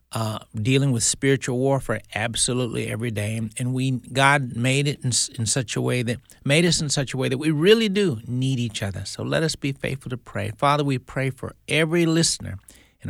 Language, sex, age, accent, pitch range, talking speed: English, male, 60-79, American, 110-140 Hz, 210 wpm